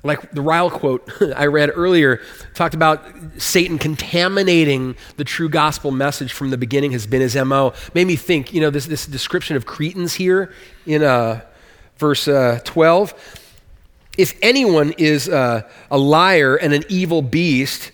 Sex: male